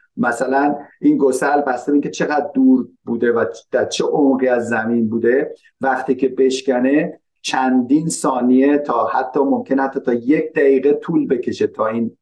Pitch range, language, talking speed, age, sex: 120-160 Hz, Persian, 150 wpm, 50-69, male